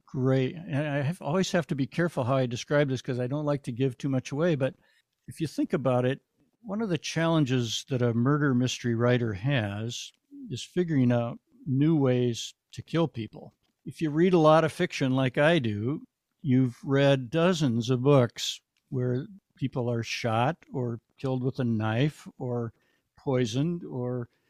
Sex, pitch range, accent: male, 125-155 Hz, American